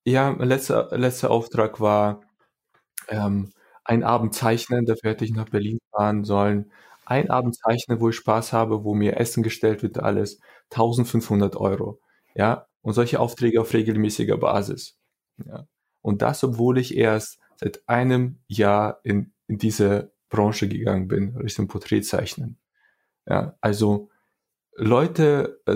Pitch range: 105-120 Hz